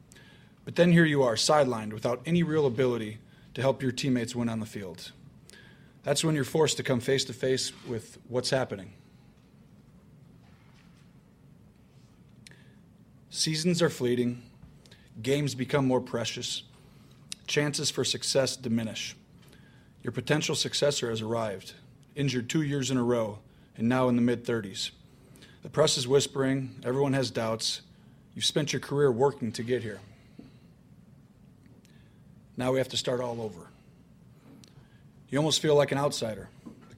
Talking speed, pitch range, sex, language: 140 wpm, 120-140 Hz, male, English